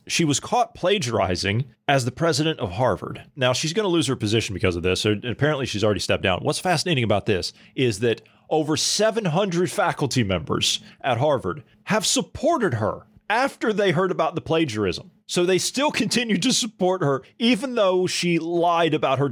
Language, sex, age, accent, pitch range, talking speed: English, male, 40-59, American, 120-185 Hz, 185 wpm